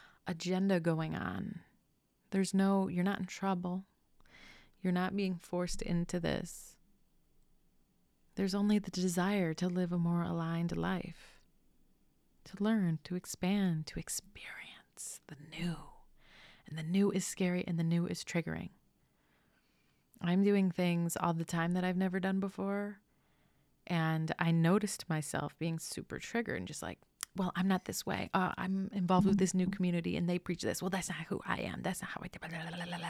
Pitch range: 170-195 Hz